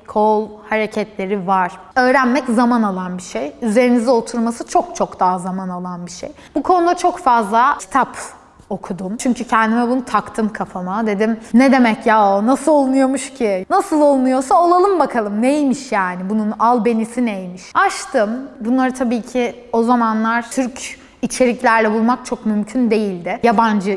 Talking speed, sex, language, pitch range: 145 wpm, female, Turkish, 215-280 Hz